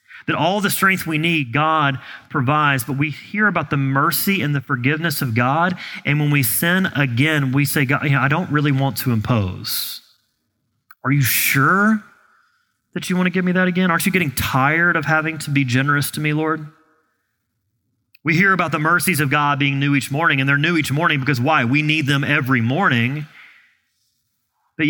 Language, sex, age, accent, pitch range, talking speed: English, male, 30-49, American, 125-175 Hz, 190 wpm